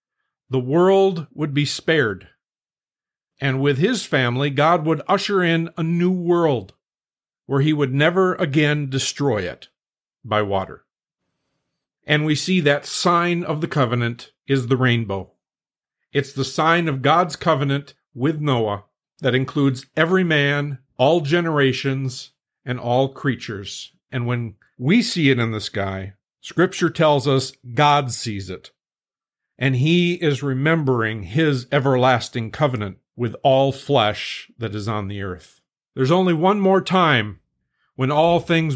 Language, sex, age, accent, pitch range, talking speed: English, male, 50-69, American, 125-165 Hz, 140 wpm